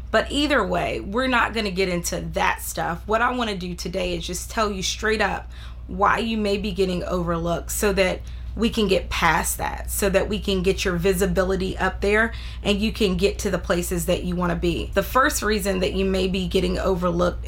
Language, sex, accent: English, female, American